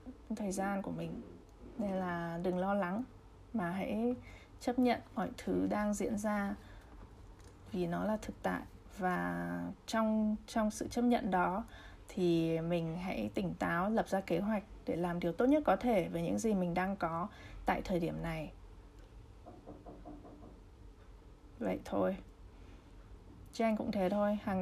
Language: Vietnamese